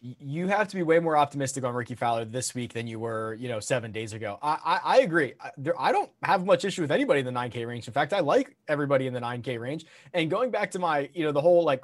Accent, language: American, English